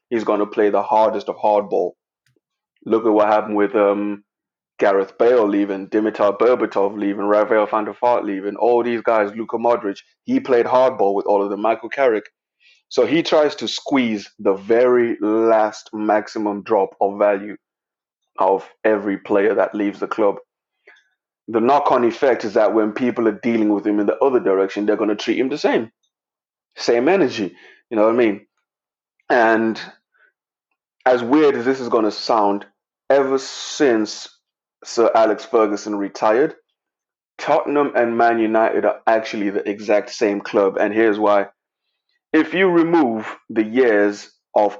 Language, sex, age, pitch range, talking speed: English, male, 20-39, 100-115 Hz, 160 wpm